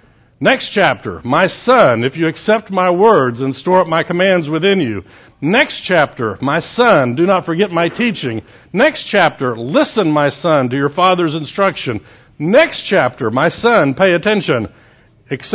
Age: 60-79